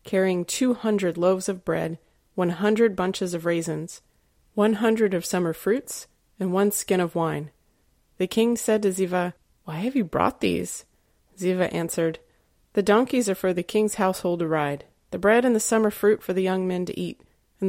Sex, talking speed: female, 185 wpm